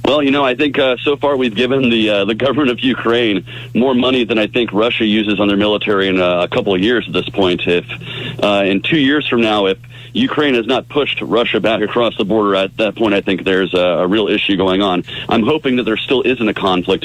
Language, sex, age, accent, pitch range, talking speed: English, male, 40-59, American, 95-120 Hz, 255 wpm